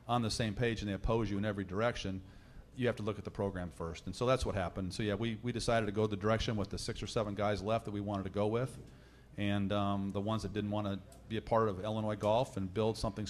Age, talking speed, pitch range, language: 40-59, 285 wpm, 100-115 Hz, English